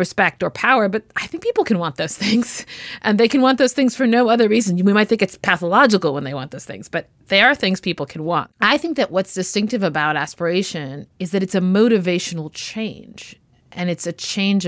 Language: English